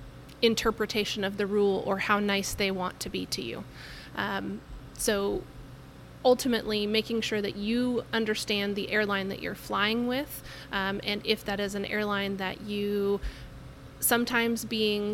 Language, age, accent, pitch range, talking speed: English, 30-49, American, 195-220 Hz, 150 wpm